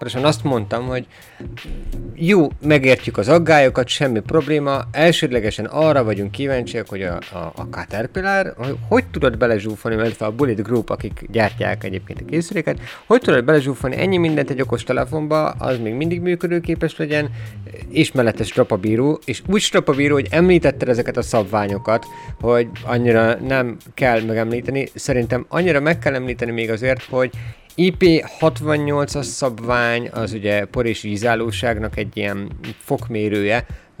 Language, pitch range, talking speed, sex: Hungarian, 105-140 Hz, 140 wpm, male